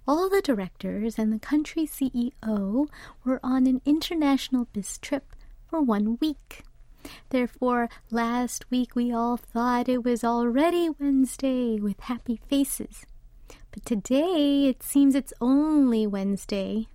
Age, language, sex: 30-49, English, female